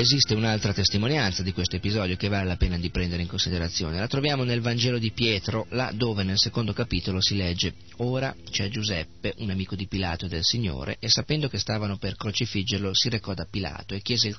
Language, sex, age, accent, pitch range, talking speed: Italian, male, 40-59, native, 95-110 Hz, 210 wpm